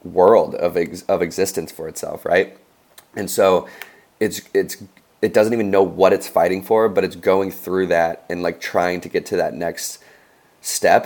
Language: English